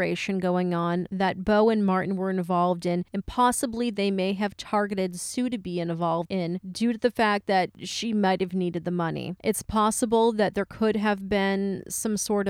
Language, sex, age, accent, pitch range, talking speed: English, female, 30-49, American, 185-225 Hz, 190 wpm